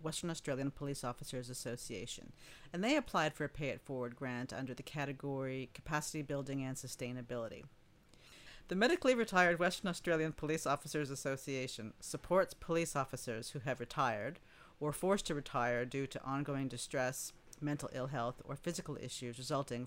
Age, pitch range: 50-69, 130-160 Hz